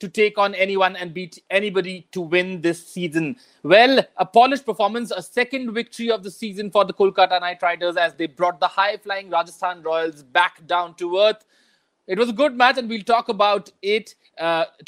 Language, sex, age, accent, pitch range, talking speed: English, male, 30-49, Indian, 175-205 Hz, 195 wpm